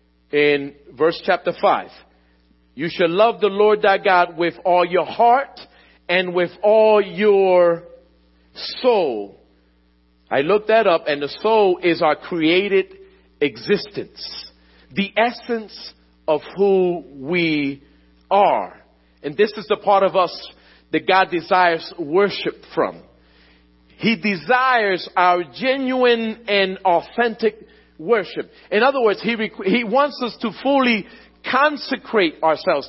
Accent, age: American, 50-69